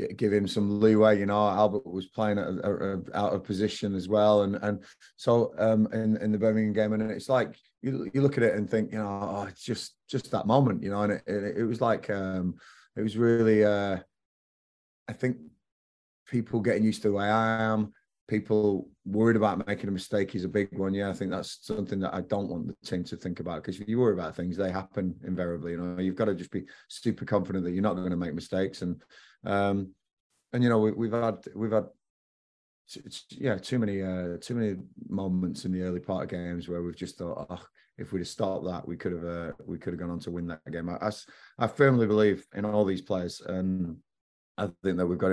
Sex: male